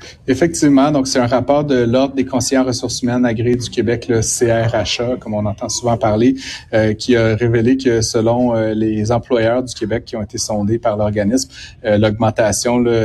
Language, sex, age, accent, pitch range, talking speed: French, male, 30-49, Canadian, 105-125 Hz, 190 wpm